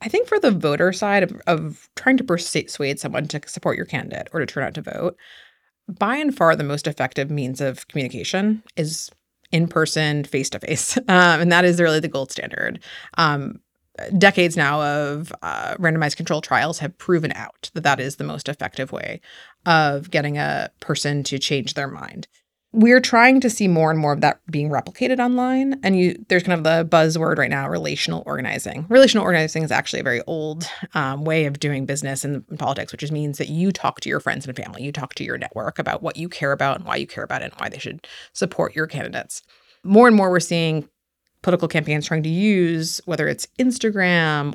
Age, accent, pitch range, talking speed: 30-49, American, 145-180 Hz, 205 wpm